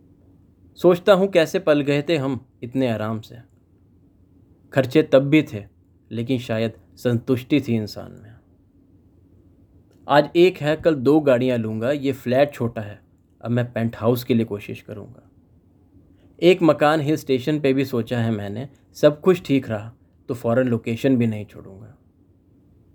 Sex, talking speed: male, 150 wpm